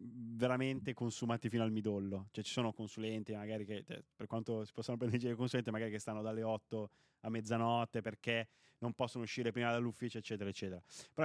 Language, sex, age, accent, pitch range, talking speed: Italian, male, 20-39, native, 110-120 Hz, 175 wpm